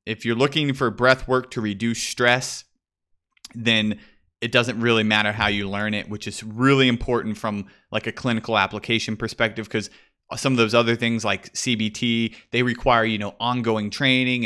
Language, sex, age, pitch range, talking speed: English, male, 30-49, 110-130 Hz, 175 wpm